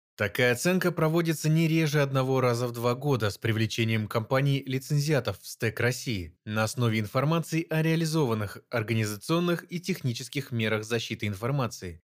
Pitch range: 110-150 Hz